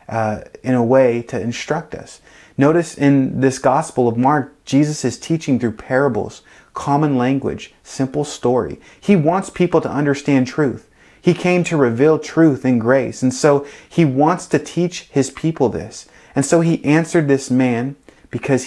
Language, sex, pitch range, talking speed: English, male, 110-145 Hz, 165 wpm